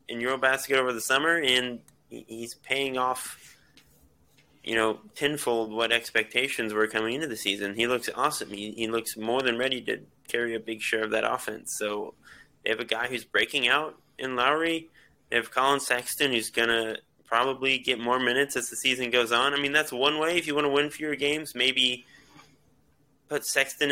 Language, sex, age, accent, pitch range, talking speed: English, male, 20-39, American, 115-140 Hz, 195 wpm